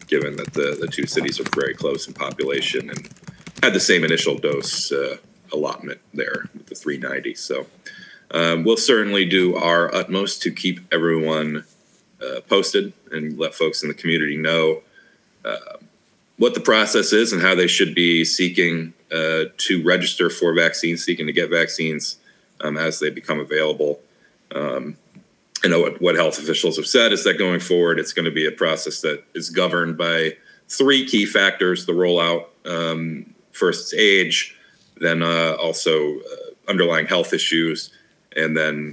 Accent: American